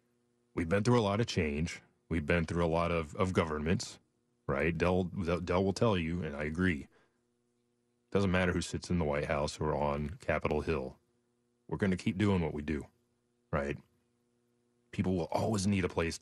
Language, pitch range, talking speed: English, 80-115 Hz, 190 wpm